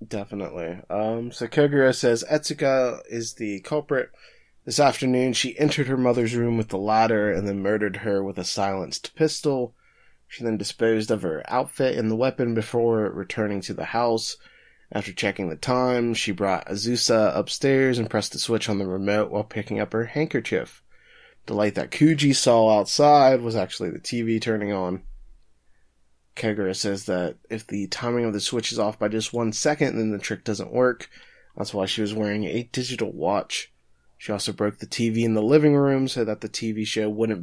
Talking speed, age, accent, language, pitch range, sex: 185 wpm, 20-39, American, English, 100-120 Hz, male